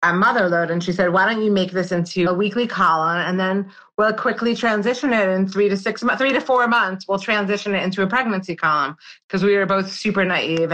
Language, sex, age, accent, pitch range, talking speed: English, female, 30-49, American, 170-195 Hz, 240 wpm